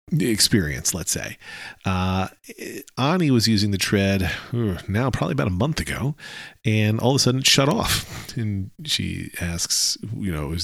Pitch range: 90-115 Hz